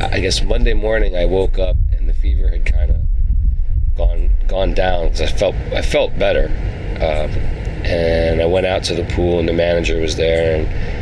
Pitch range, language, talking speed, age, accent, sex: 80-95 Hz, English, 195 wpm, 40-59, American, male